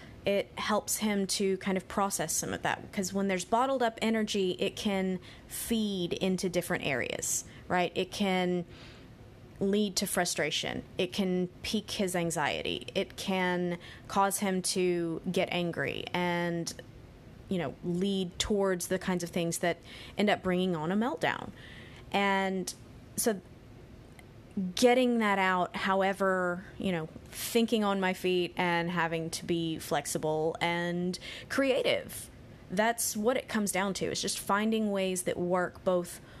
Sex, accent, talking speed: female, American, 145 wpm